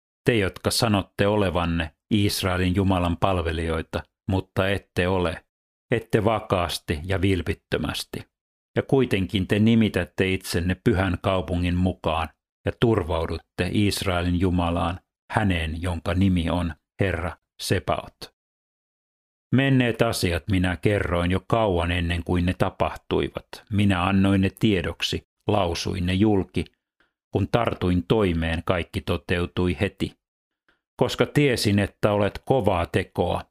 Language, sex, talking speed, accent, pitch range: Finnish, male, 110 wpm, native, 85-105 Hz